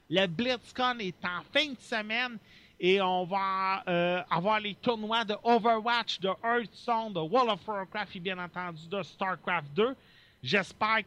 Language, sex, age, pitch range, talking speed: French, male, 40-59, 170-210 Hz, 155 wpm